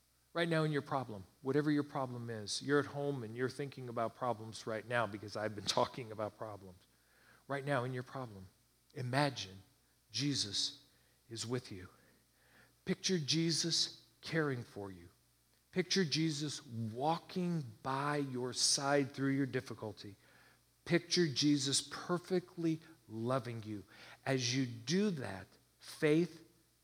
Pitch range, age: 105-150 Hz, 50-69